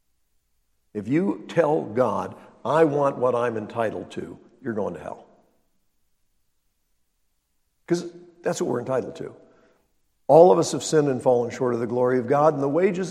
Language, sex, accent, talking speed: English, male, American, 165 wpm